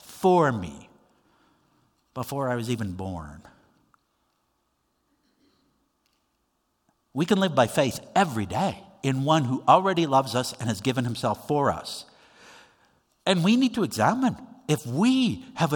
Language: English